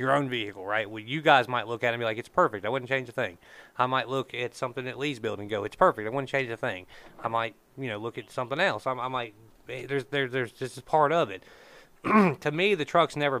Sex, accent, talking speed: male, American, 275 wpm